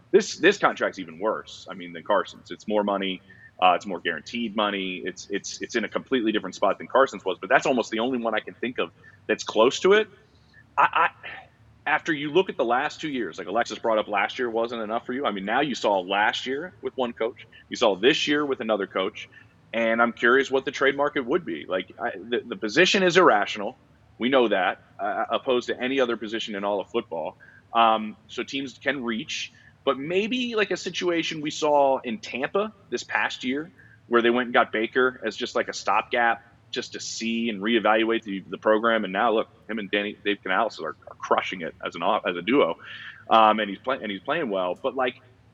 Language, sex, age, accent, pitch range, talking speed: English, male, 30-49, American, 110-140 Hz, 225 wpm